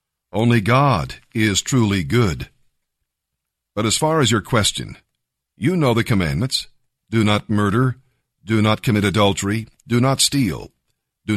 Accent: American